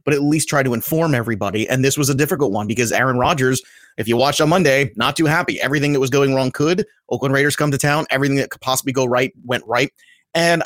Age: 30-49